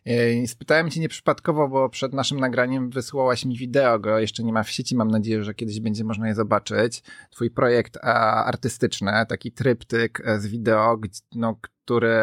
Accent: native